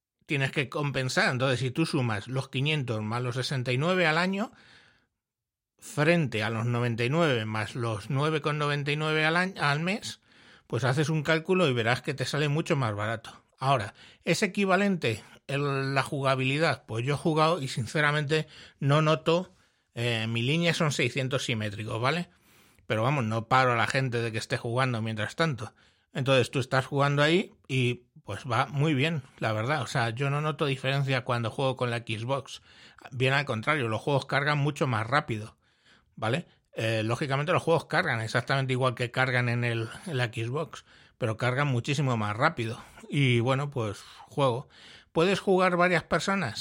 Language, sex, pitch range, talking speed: Spanish, male, 120-155 Hz, 165 wpm